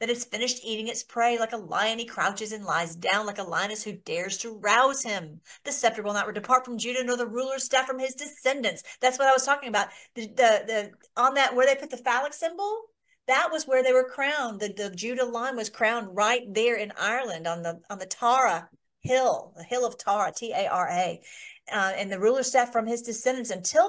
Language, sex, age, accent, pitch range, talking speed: English, female, 40-59, American, 200-255 Hz, 230 wpm